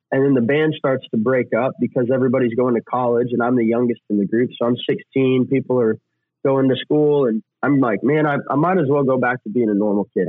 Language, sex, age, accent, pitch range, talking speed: English, male, 30-49, American, 115-135 Hz, 255 wpm